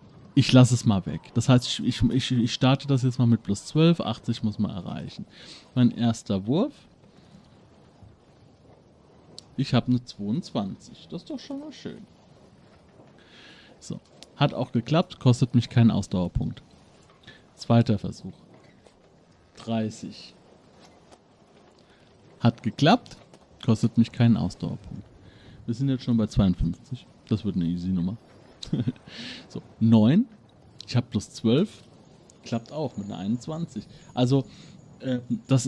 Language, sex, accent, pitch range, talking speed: German, male, German, 110-130 Hz, 130 wpm